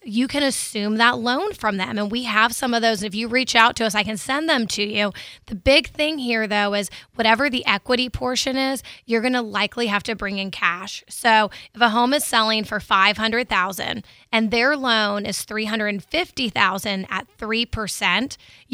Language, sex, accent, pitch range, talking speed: English, female, American, 210-250 Hz, 195 wpm